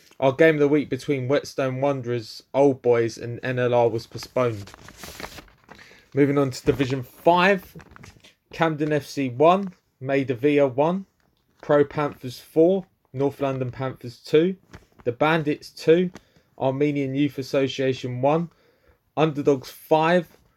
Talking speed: 115 wpm